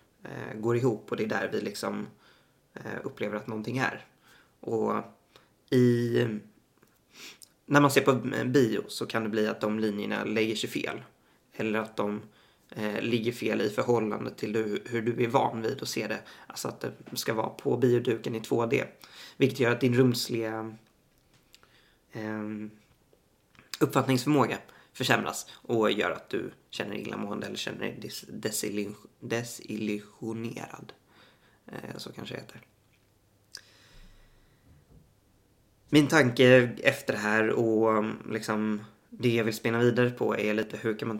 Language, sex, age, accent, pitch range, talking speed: Swedish, male, 20-39, native, 105-120 Hz, 140 wpm